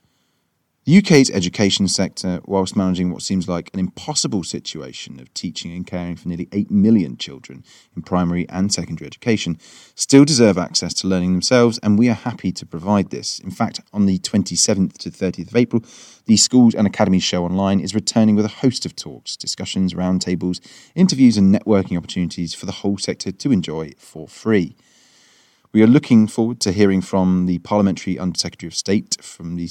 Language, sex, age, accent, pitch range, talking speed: English, male, 30-49, British, 90-120 Hz, 180 wpm